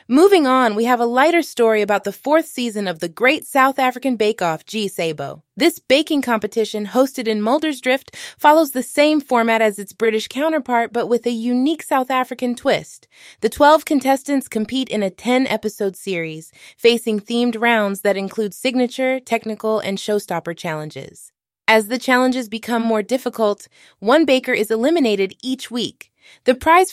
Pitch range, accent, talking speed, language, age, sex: 215-270 Hz, American, 165 wpm, English, 20-39, female